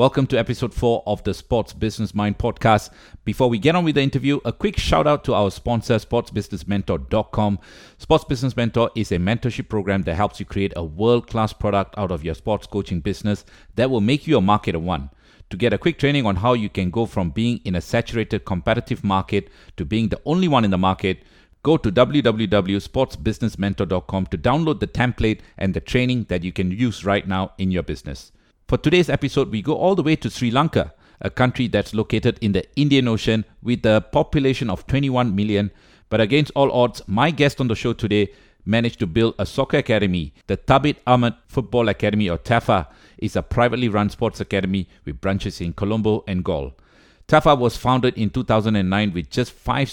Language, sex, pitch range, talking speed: English, male, 100-125 Hz, 195 wpm